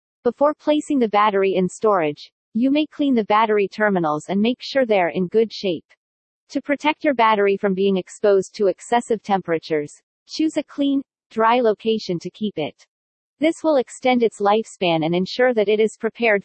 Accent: American